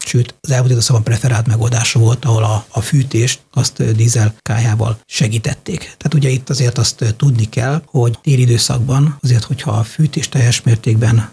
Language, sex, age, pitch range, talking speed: Hungarian, male, 60-79, 115-130 Hz, 155 wpm